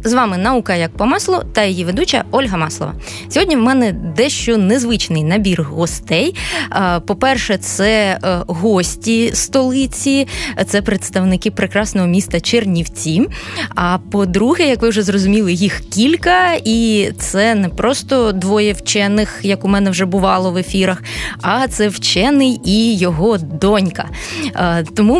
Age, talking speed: 20-39, 130 wpm